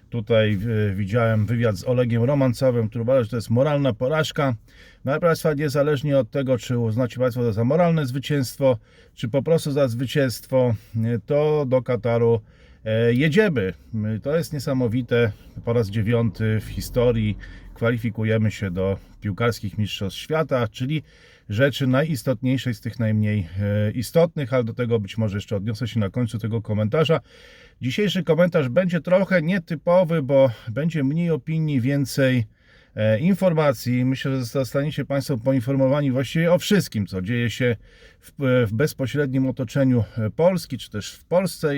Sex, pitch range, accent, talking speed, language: male, 115-145 Hz, native, 135 wpm, Polish